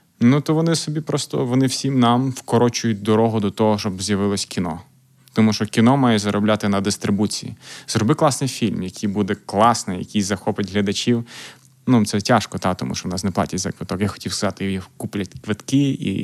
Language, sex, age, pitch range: Ukrainian, male, 20-39, 100-125 Hz